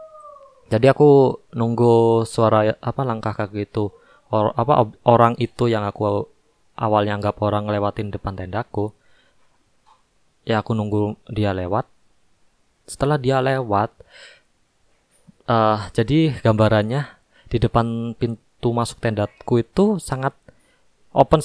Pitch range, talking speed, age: 105-130 Hz, 105 wpm, 20-39